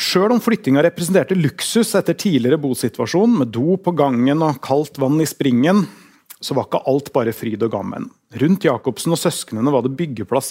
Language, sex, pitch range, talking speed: English, male, 130-180 Hz, 170 wpm